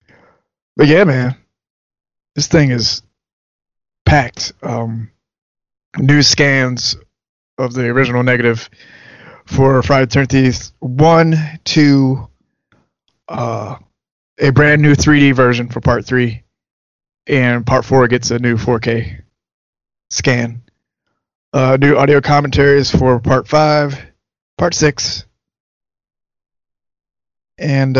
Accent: American